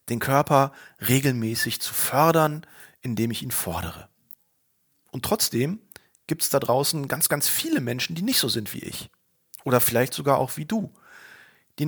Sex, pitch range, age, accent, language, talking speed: male, 115-155 Hz, 40-59, German, German, 160 wpm